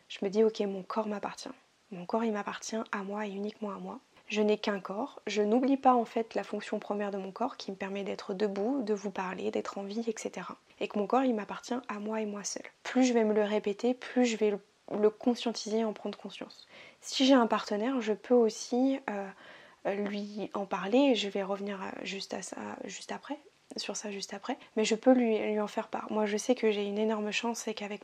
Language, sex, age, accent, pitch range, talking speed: French, female, 20-39, French, 205-235 Hz, 240 wpm